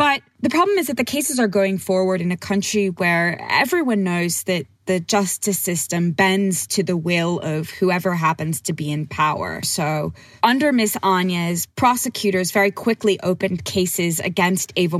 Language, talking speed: English, 170 wpm